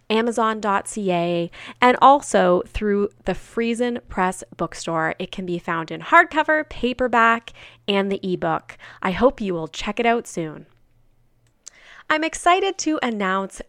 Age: 20-39